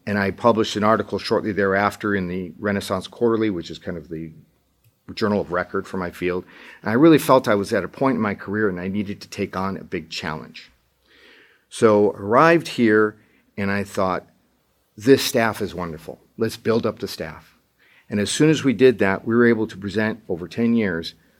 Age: 50-69